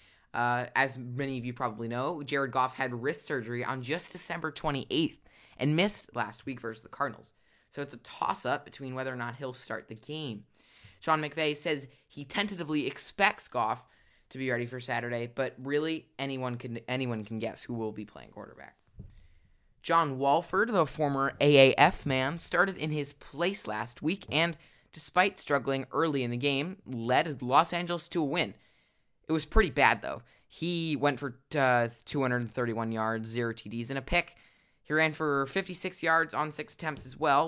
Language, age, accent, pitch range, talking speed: English, 20-39, American, 120-155 Hz, 175 wpm